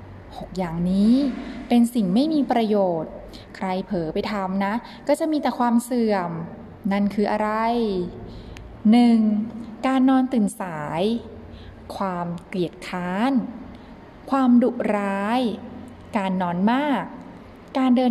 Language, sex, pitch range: Thai, female, 195-240 Hz